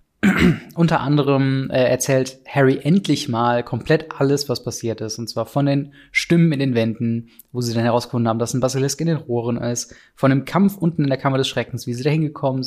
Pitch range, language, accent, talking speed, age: 120-145 Hz, German, German, 215 wpm, 20-39